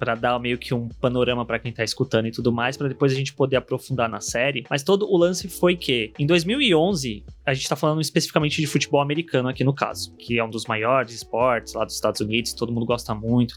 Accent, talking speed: Brazilian, 240 wpm